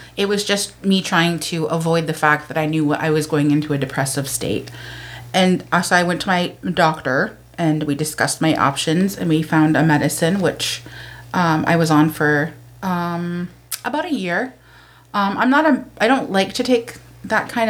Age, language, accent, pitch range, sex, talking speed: 30-49, English, American, 150-185 Hz, female, 190 wpm